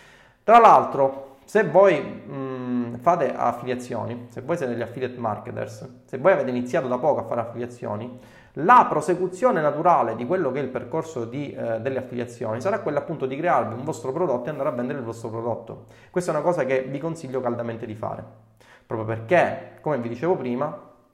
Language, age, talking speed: Italian, 30-49, 185 wpm